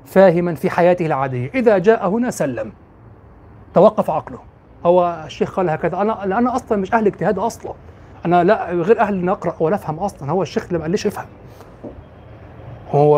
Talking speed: 160 wpm